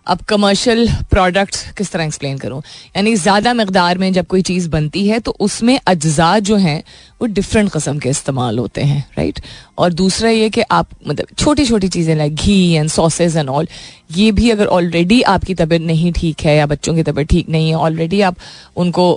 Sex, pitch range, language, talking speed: female, 155-190 Hz, Hindi, 195 wpm